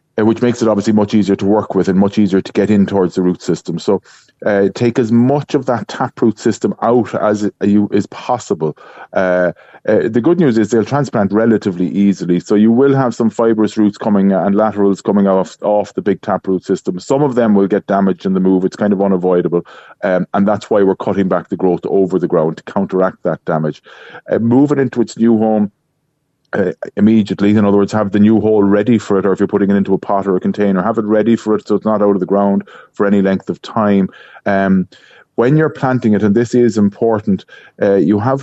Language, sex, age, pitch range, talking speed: English, male, 30-49, 95-115 Hz, 230 wpm